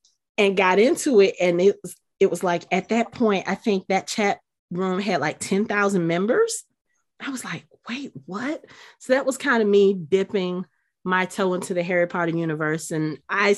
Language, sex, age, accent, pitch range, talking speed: English, female, 30-49, American, 165-200 Hz, 190 wpm